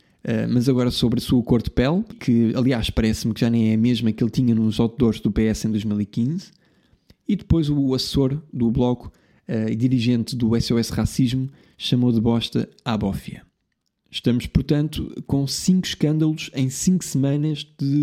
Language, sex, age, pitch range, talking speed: Portuguese, male, 20-39, 115-145 Hz, 175 wpm